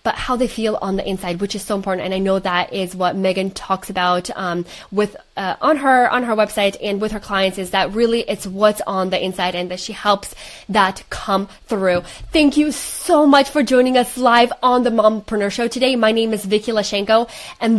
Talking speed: 225 wpm